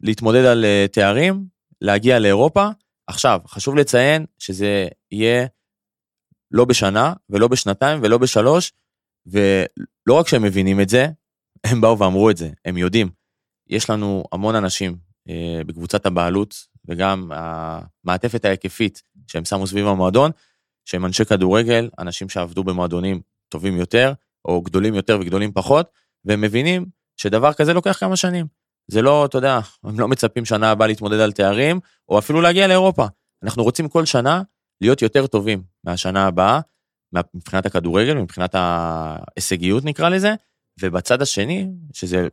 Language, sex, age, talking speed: Hebrew, male, 20-39, 135 wpm